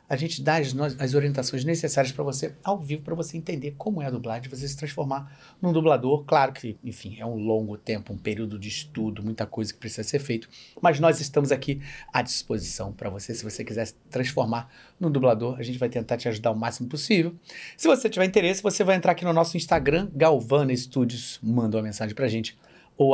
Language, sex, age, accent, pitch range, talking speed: Portuguese, male, 40-59, Brazilian, 115-155 Hz, 225 wpm